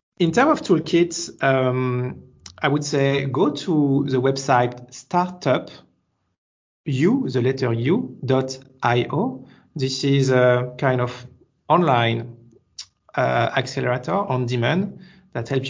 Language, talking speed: English, 115 wpm